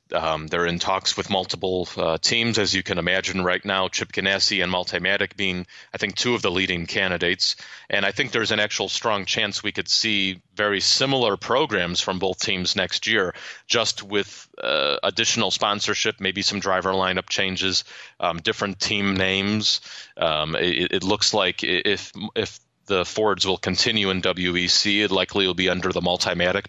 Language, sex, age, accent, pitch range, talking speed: English, male, 30-49, American, 90-105 Hz, 180 wpm